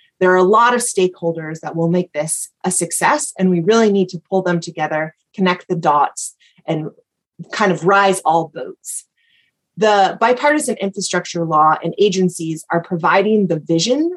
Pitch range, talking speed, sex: 170-210 Hz, 165 wpm, female